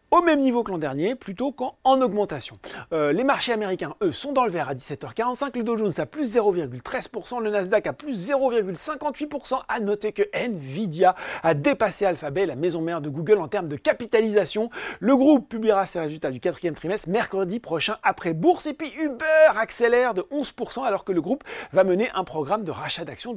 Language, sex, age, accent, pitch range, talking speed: French, male, 40-59, French, 170-260 Hz, 195 wpm